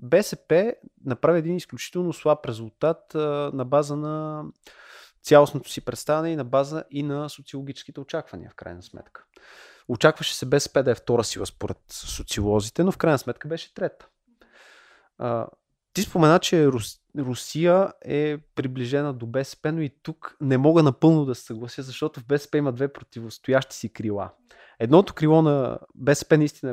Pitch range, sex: 120-150 Hz, male